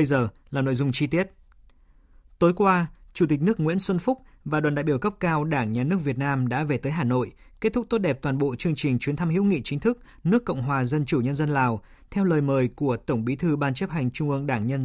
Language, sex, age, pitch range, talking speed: Vietnamese, male, 20-39, 130-170 Hz, 270 wpm